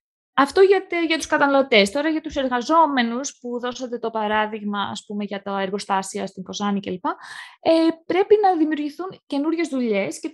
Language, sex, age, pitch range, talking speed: Greek, female, 20-39, 200-280 Hz, 150 wpm